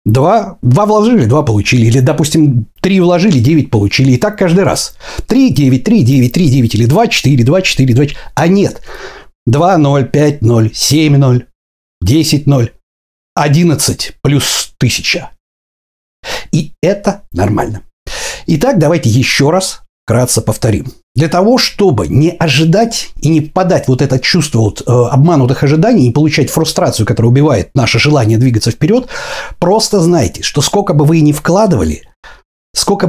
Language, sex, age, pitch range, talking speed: Russian, male, 60-79, 120-175 Hz, 150 wpm